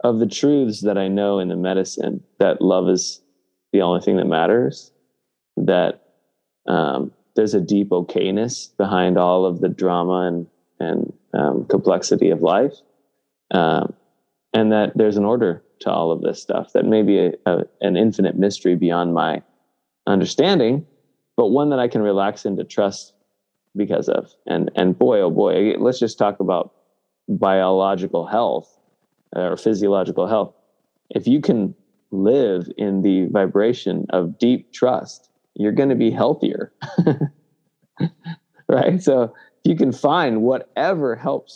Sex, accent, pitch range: male, American, 95-115 Hz